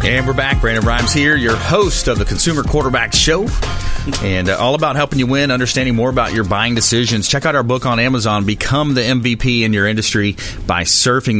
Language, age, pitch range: English, 40-59, 95-115 Hz